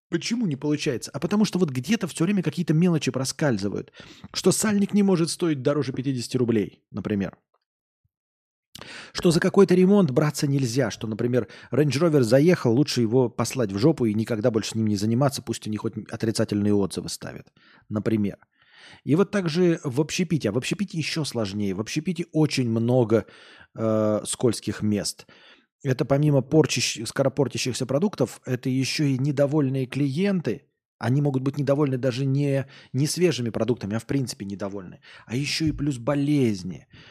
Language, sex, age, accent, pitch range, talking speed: Russian, male, 20-39, native, 115-155 Hz, 155 wpm